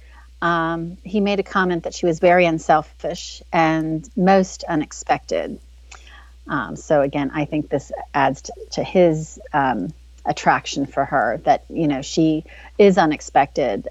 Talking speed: 140 wpm